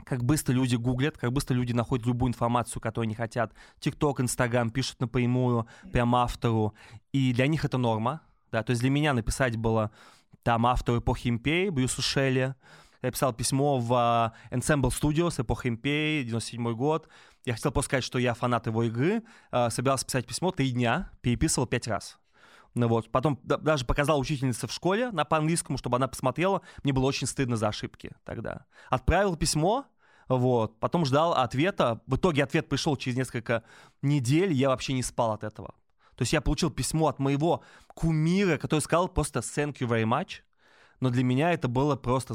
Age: 20-39